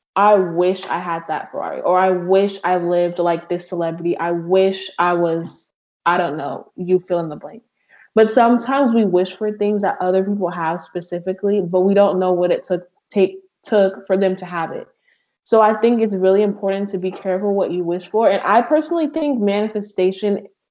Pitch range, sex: 175-205 Hz, female